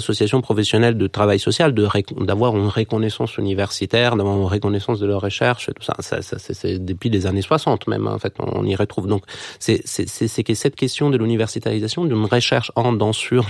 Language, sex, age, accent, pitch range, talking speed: French, male, 30-49, French, 100-120 Hz, 220 wpm